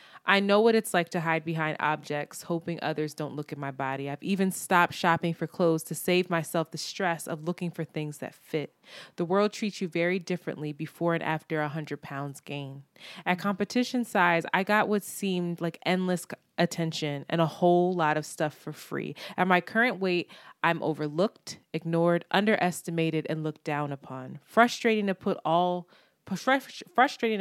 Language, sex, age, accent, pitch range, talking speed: English, female, 20-39, American, 155-185 Hz, 175 wpm